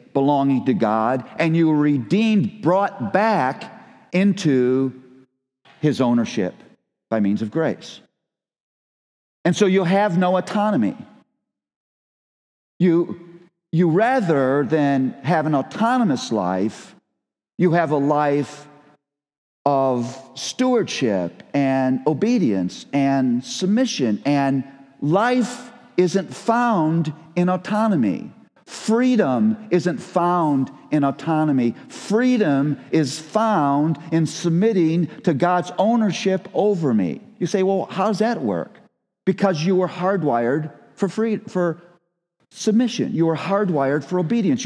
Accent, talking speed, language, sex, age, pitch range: American, 110 wpm, English, male, 50-69, 140-195 Hz